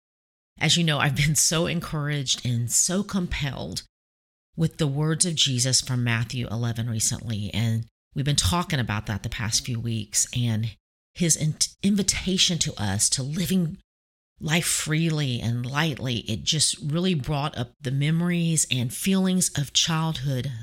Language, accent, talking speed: English, American, 150 wpm